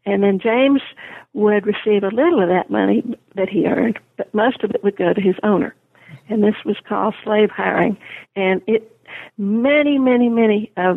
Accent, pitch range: American, 195-225 Hz